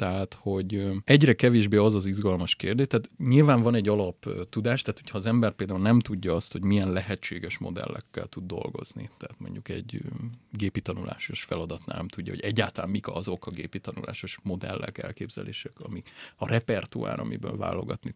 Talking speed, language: 155 wpm, Hungarian